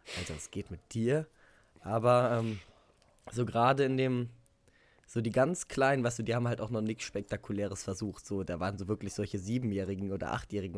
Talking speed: 190 wpm